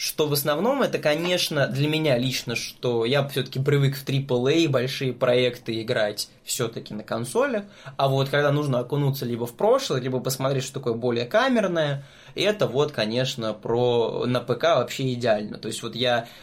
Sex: male